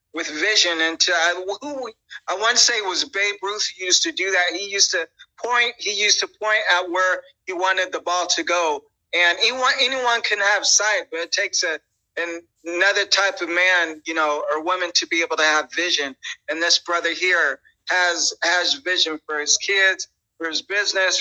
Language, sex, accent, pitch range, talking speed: English, male, American, 155-195 Hz, 205 wpm